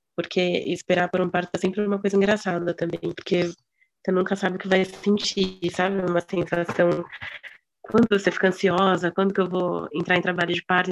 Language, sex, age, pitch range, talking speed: Portuguese, female, 20-39, 175-200 Hz, 190 wpm